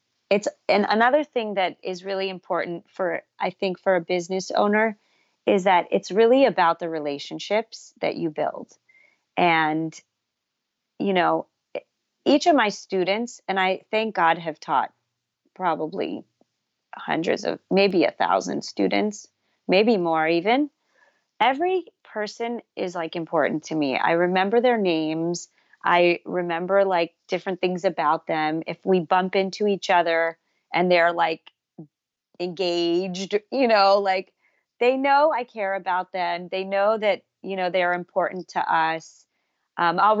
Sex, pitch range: female, 170-205 Hz